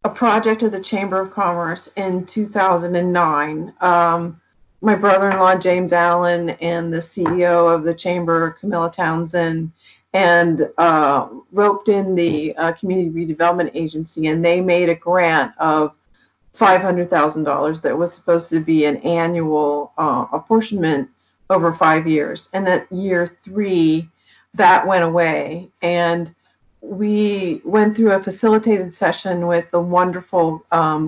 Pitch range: 165-190 Hz